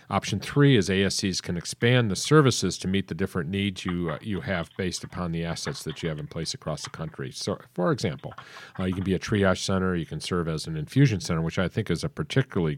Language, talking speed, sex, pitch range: English, 245 wpm, male, 85-115 Hz